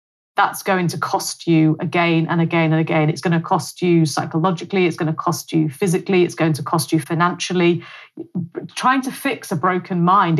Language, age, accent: English, 30-49, British